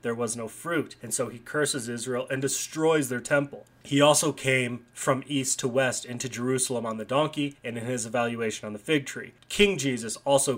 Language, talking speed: English, 205 wpm